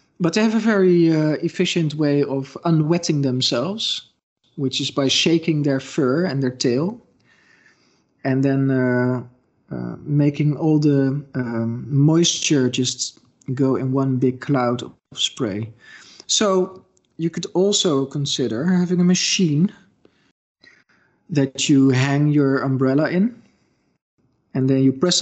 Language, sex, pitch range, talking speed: English, male, 130-165 Hz, 130 wpm